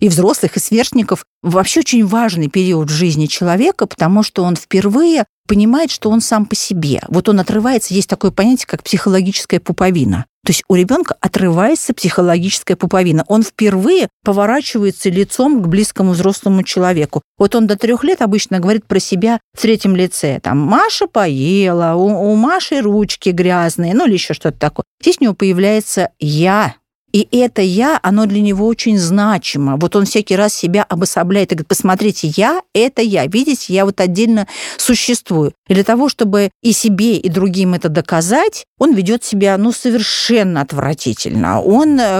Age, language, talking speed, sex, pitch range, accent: 50-69, Russian, 165 wpm, female, 185-225 Hz, native